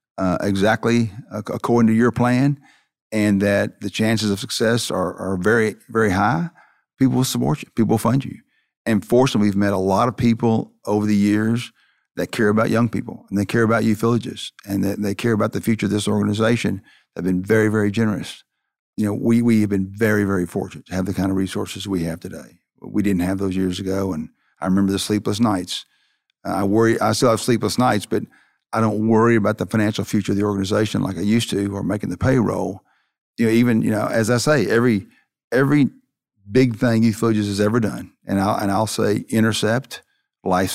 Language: English